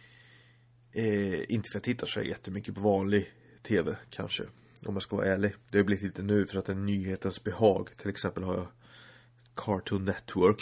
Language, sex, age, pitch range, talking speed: Swedish, male, 30-49, 100-120 Hz, 200 wpm